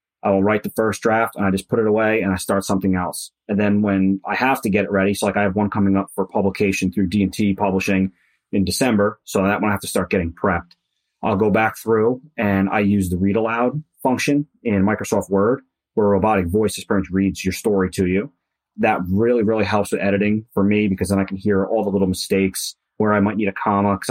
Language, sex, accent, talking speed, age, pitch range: English, male, American, 240 wpm, 30-49, 95-115 Hz